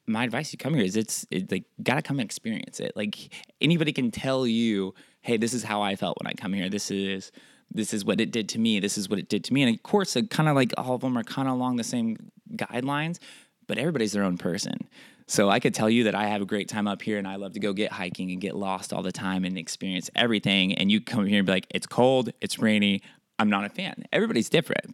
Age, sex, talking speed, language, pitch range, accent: 20-39, male, 270 wpm, English, 105-135 Hz, American